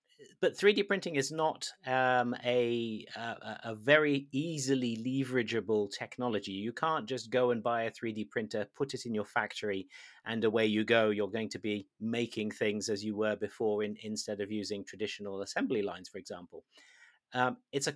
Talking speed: 175 wpm